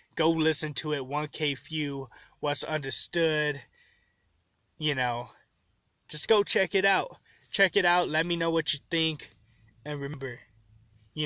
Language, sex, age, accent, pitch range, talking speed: English, male, 20-39, American, 145-170 Hz, 145 wpm